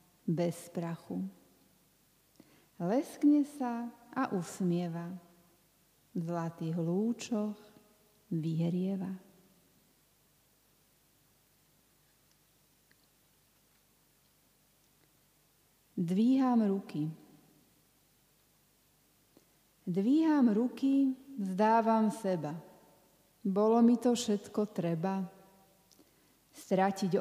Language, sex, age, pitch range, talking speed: Slovak, female, 40-59, 170-225 Hz, 50 wpm